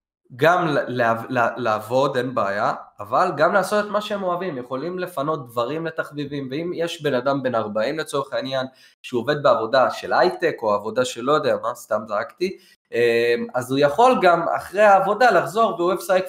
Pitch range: 120-170 Hz